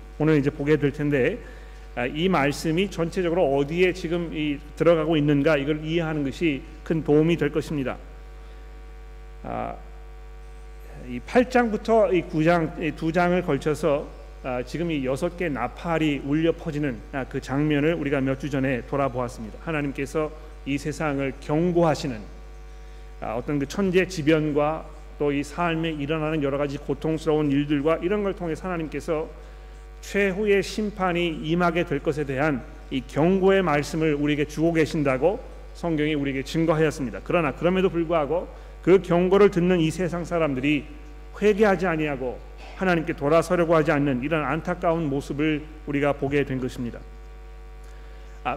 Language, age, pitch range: Korean, 40-59, 145-170 Hz